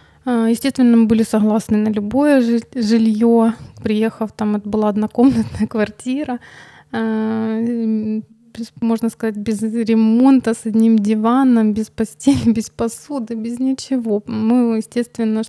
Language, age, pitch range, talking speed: Ukrainian, 20-39, 220-235 Hz, 110 wpm